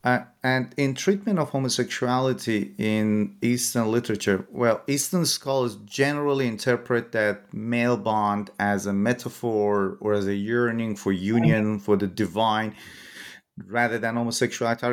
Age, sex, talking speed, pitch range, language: 30-49, male, 135 wpm, 110-130 Hz, English